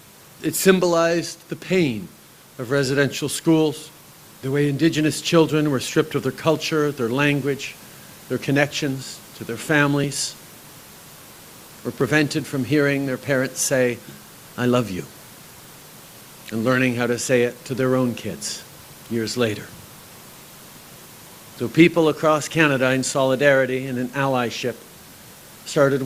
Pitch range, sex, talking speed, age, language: 125-150 Hz, male, 125 wpm, 50-69, English